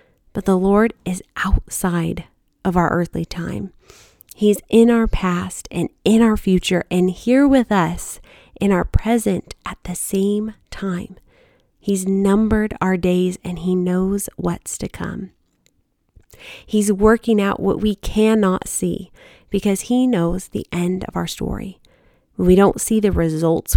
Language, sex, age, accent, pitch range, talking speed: English, female, 30-49, American, 180-215 Hz, 145 wpm